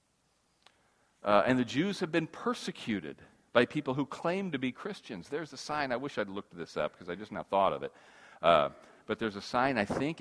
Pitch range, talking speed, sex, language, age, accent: 100-130 Hz, 215 wpm, male, English, 40-59, American